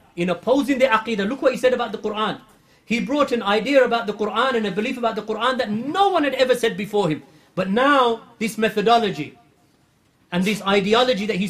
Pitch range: 195-240 Hz